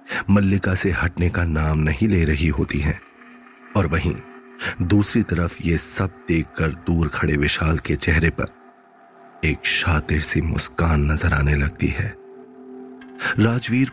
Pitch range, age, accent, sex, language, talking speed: 85-120 Hz, 30-49, native, male, Hindi, 140 wpm